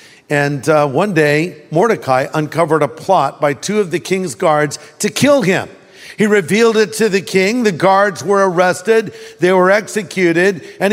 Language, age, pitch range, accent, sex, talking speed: English, 50-69, 160-215 Hz, American, male, 170 wpm